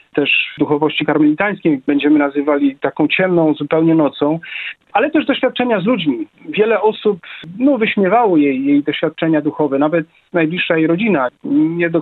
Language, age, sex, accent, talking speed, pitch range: Polish, 40-59, male, native, 140 wpm, 150-210 Hz